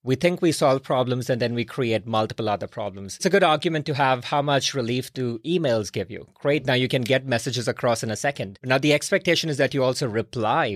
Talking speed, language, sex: 240 wpm, English, male